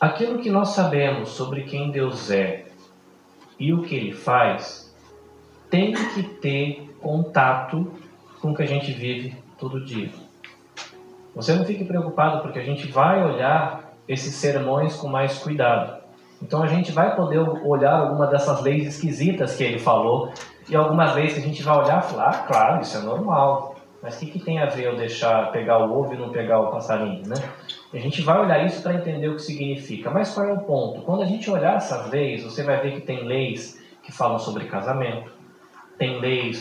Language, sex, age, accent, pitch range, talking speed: Portuguese, male, 20-39, Brazilian, 115-155 Hz, 195 wpm